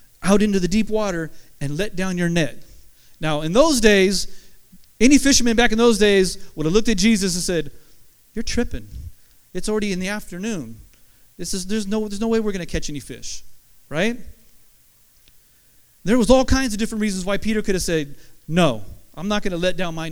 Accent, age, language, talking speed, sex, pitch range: American, 40-59, English, 195 wpm, male, 170-225 Hz